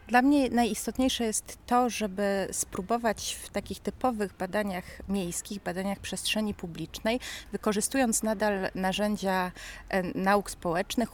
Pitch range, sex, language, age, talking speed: 190-230 Hz, female, Polish, 30-49, 110 wpm